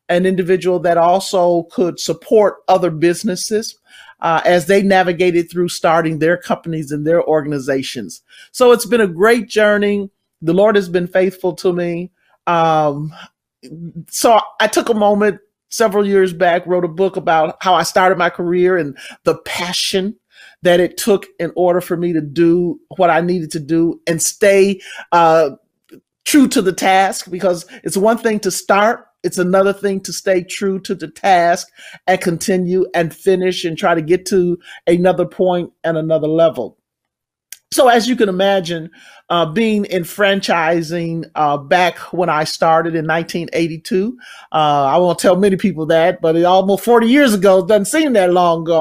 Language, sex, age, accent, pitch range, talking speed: English, male, 40-59, American, 170-200 Hz, 170 wpm